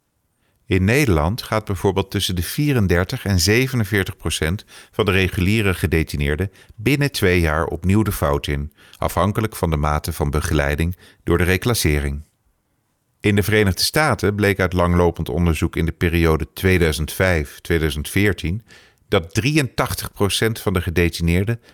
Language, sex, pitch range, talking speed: English, male, 85-110 Hz, 130 wpm